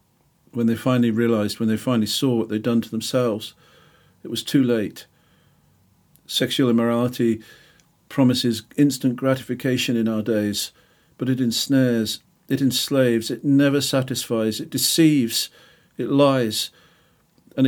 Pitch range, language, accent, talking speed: 115-135 Hz, English, British, 130 wpm